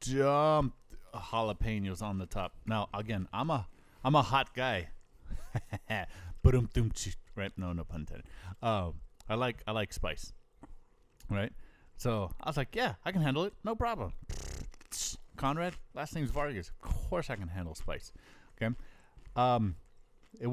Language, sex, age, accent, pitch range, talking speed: English, male, 30-49, American, 95-120 Hz, 140 wpm